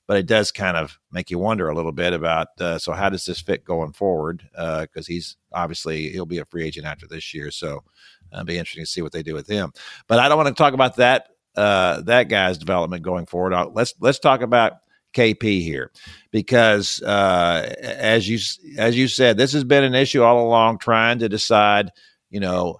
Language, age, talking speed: English, 50-69, 220 wpm